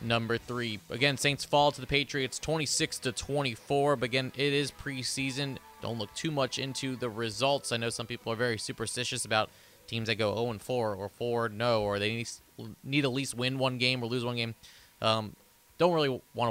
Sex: male